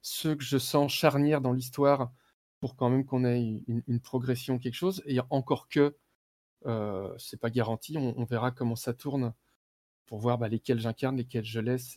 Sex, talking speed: male, 195 wpm